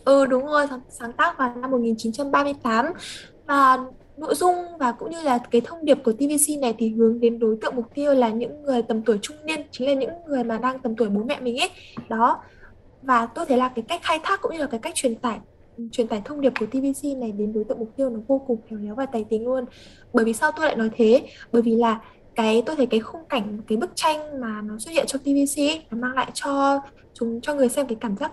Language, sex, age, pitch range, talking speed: Vietnamese, female, 10-29, 230-285 Hz, 255 wpm